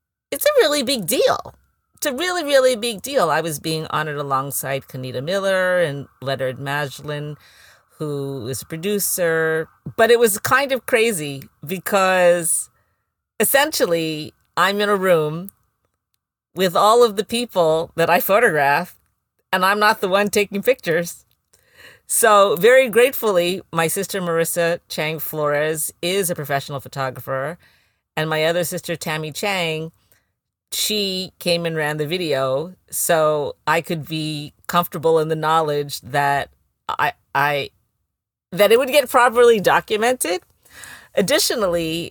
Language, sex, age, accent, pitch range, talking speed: English, female, 40-59, American, 135-185 Hz, 135 wpm